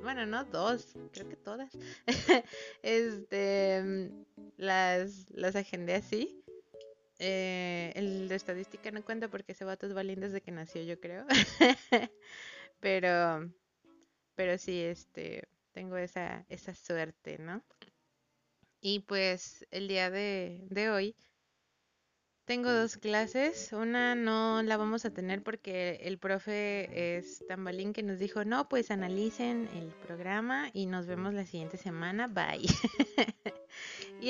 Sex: female